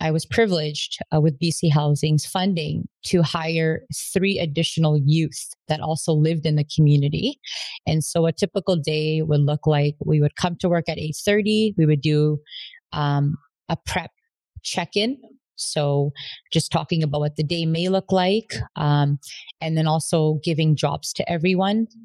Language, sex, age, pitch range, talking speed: English, female, 30-49, 155-180 Hz, 160 wpm